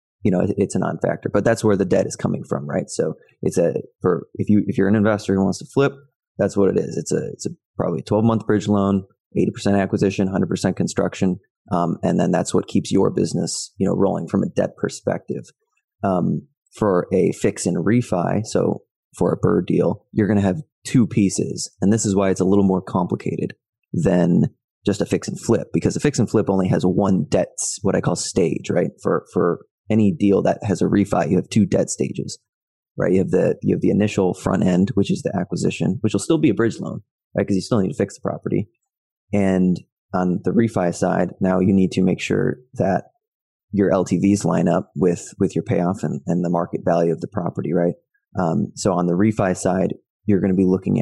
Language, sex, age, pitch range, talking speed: English, male, 20-39, 95-105 Hz, 225 wpm